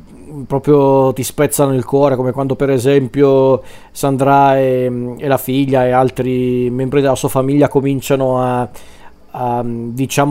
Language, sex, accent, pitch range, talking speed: Italian, male, native, 130-145 Hz, 130 wpm